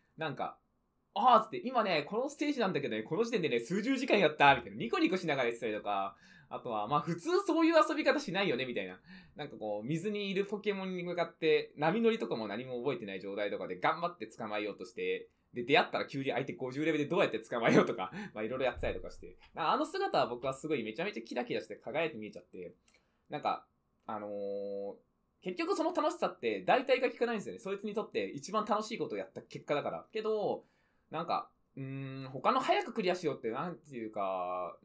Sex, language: male, Japanese